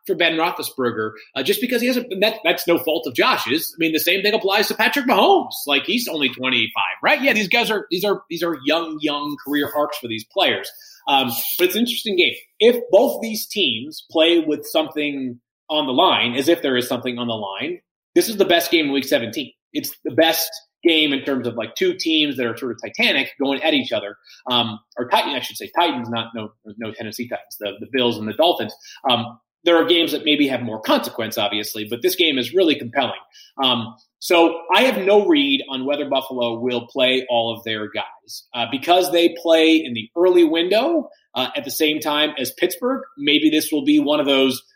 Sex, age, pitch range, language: male, 30-49, 130-215 Hz, English